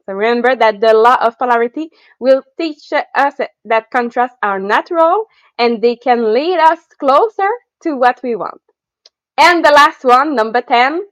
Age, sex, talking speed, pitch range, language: 20-39, female, 160 wpm, 220-285 Hz, English